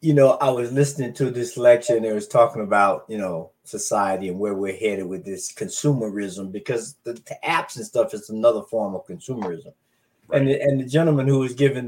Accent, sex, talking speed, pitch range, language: American, male, 210 wpm, 115-155 Hz, English